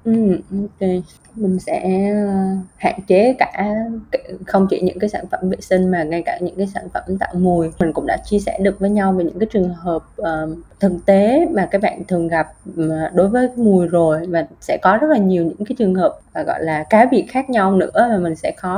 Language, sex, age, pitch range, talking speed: Vietnamese, female, 20-39, 175-210 Hz, 230 wpm